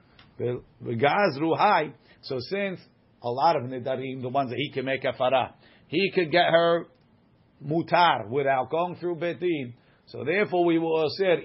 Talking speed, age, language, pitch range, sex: 145 wpm, 50-69, English, 125-160 Hz, male